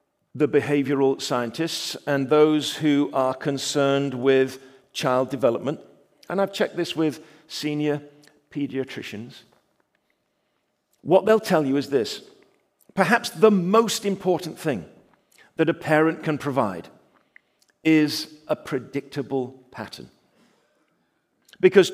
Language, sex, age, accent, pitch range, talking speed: English, male, 50-69, British, 150-200 Hz, 105 wpm